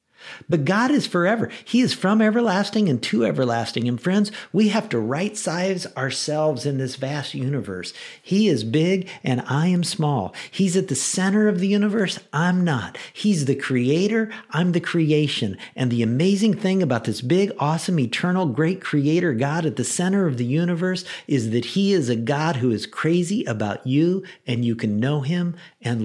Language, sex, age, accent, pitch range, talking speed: English, male, 50-69, American, 120-175 Hz, 185 wpm